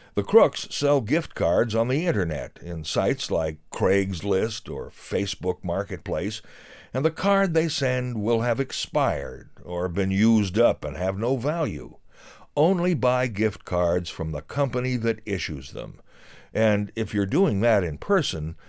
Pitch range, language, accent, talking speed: 90-145 Hz, English, American, 155 wpm